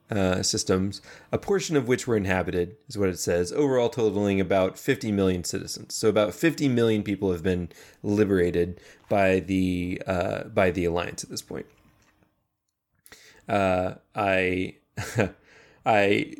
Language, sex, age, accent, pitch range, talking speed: English, male, 20-39, American, 95-110 Hz, 140 wpm